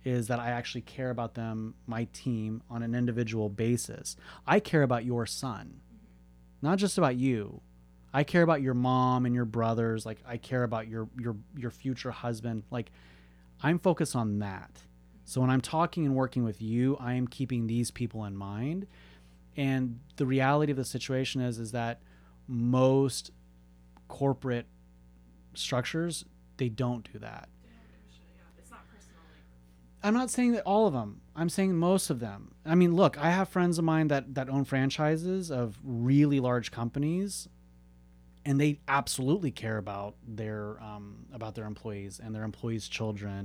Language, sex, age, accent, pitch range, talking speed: English, male, 30-49, American, 100-135 Hz, 160 wpm